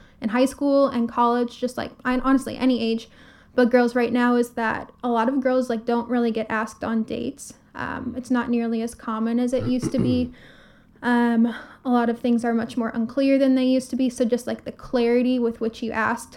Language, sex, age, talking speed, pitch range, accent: English, female, 10-29, 225 wpm, 235-255 Hz, American